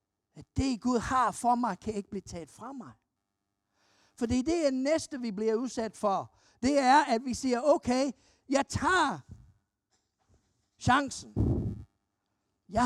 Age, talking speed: 50-69, 145 wpm